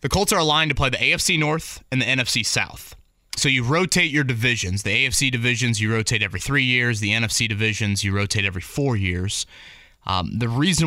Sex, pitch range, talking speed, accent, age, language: male, 105-140 Hz, 205 wpm, American, 20-39, English